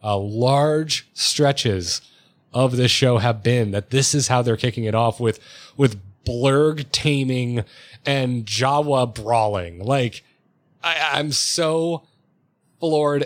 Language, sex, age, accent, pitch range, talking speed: English, male, 30-49, American, 125-165 Hz, 130 wpm